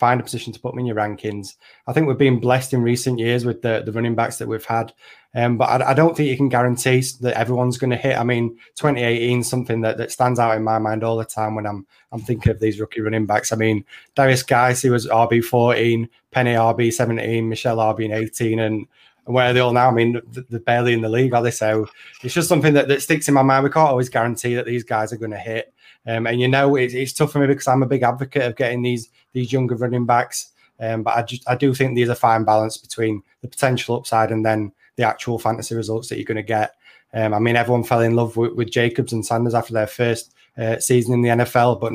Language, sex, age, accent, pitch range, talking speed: English, male, 20-39, British, 115-125 Hz, 260 wpm